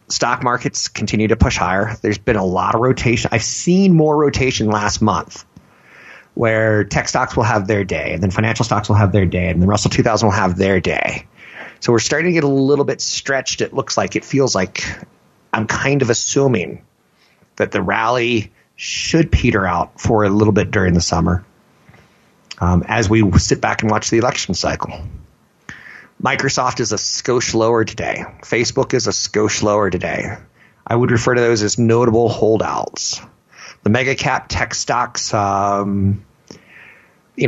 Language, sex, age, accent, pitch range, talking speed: English, male, 30-49, American, 100-125 Hz, 175 wpm